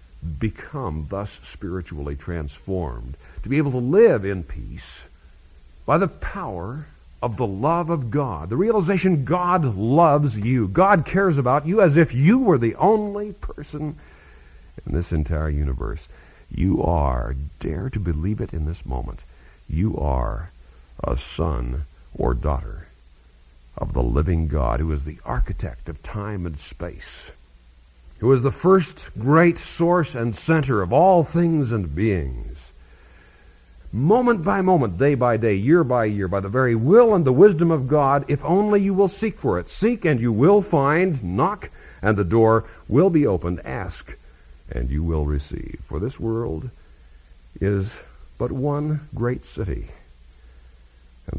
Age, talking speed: 50-69, 150 wpm